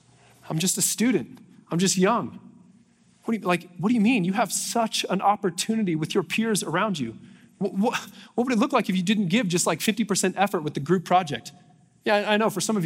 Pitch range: 180-220 Hz